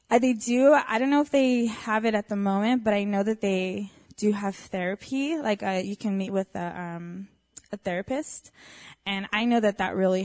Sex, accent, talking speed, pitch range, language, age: female, American, 210 wpm, 195-250 Hz, English, 20-39